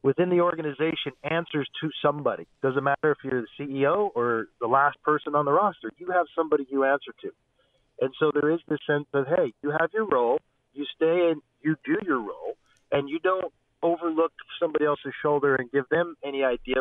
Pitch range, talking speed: 135-165 Hz, 200 wpm